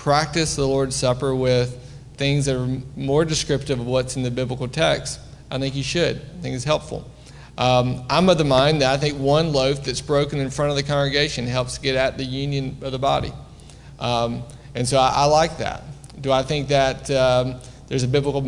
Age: 40-59